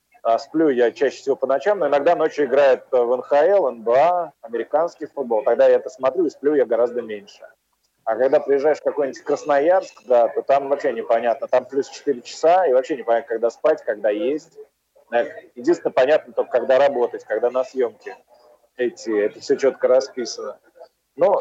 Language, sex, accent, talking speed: Russian, male, native, 170 wpm